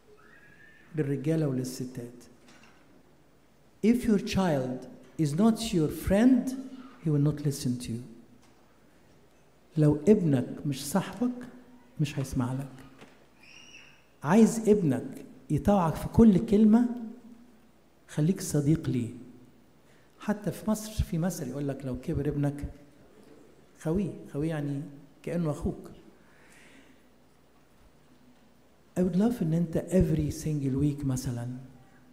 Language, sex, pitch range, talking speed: English, male, 135-190 Hz, 95 wpm